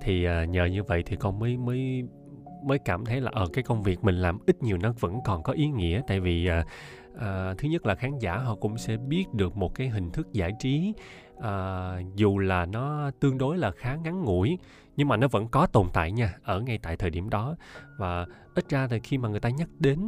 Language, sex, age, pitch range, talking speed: Vietnamese, male, 20-39, 95-135 Hz, 245 wpm